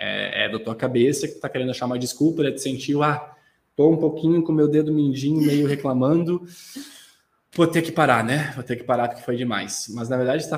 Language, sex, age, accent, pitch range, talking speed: Portuguese, male, 20-39, Brazilian, 120-155 Hz, 240 wpm